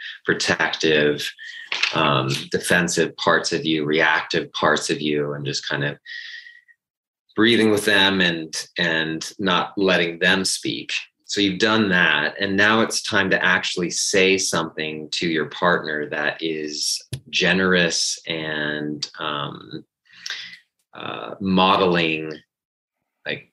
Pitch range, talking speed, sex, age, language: 75-95 Hz, 115 wpm, male, 30-49, English